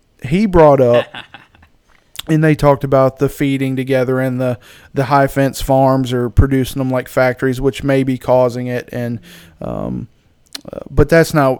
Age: 20-39